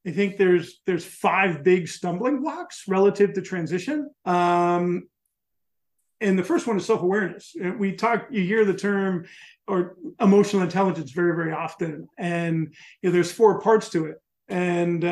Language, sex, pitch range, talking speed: English, male, 175-205 Hz, 155 wpm